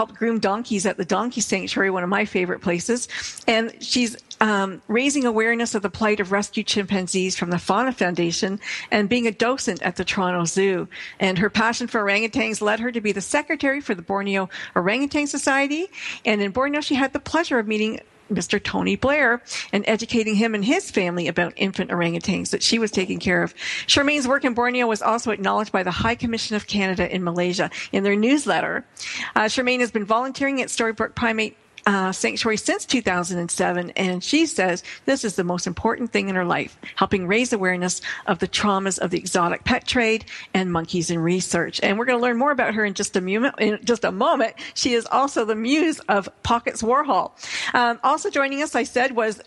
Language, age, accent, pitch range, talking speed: English, 50-69, American, 195-250 Hz, 205 wpm